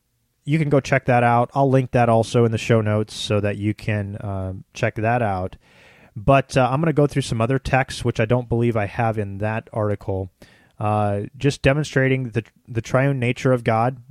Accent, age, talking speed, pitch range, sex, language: American, 30-49, 215 wpm, 110-130 Hz, male, English